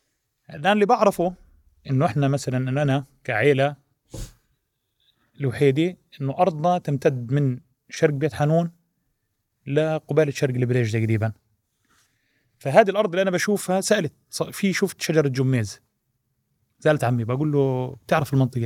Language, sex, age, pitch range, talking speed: Arabic, male, 30-49, 115-145 Hz, 115 wpm